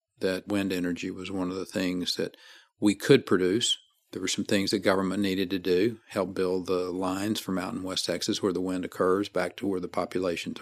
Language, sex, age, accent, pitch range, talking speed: English, male, 50-69, American, 95-110 Hz, 220 wpm